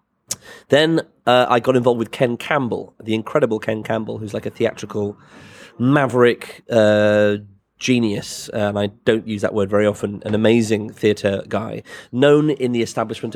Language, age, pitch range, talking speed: English, 30-49, 105-120 Hz, 160 wpm